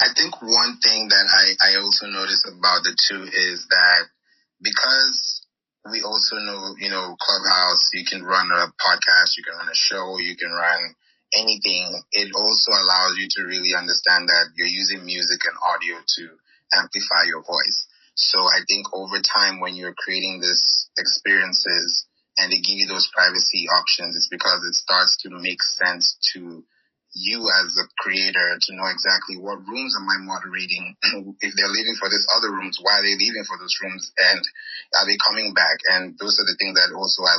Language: English